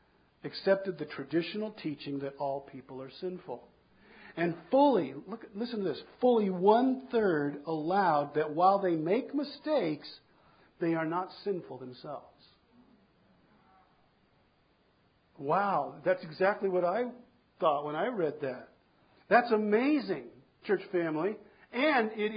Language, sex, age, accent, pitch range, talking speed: English, male, 50-69, American, 190-250 Hz, 120 wpm